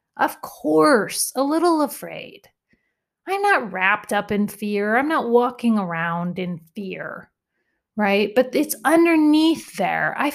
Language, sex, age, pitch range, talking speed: English, female, 30-49, 215-285 Hz, 135 wpm